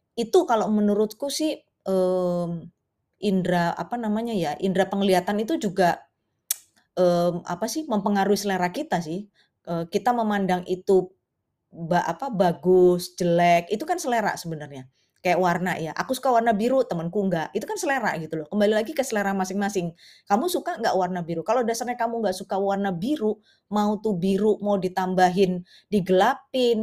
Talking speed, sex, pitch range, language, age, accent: 155 wpm, female, 180-230 Hz, Indonesian, 20-39, native